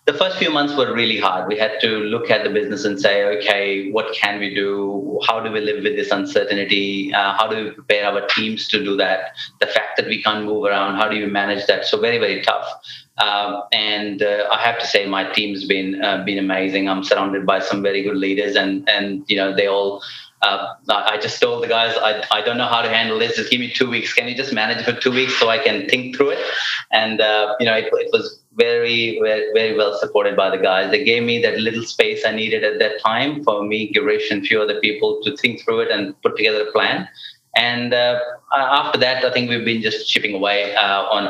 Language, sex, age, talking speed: English, male, 30-49, 245 wpm